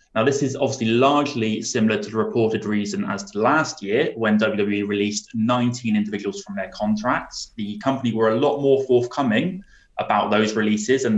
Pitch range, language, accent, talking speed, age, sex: 110-140 Hz, English, British, 175 wpm, 20-39, male